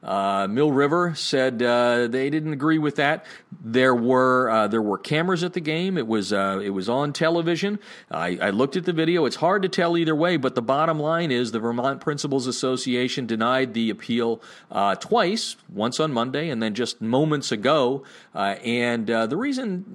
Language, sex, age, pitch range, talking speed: English, male, 40-59, 115-170 Hz, 200 wpm